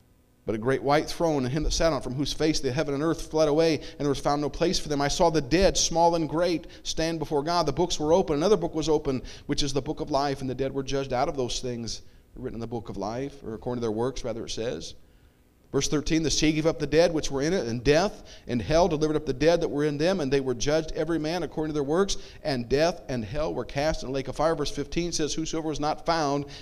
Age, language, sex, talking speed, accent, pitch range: 40-59, English, male, 285 wpm, American, 110-160 Hz